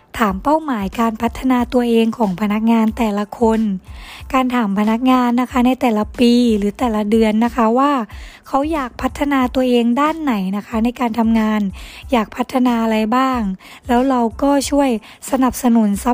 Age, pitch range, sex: 20-39, 220-260 Hz, female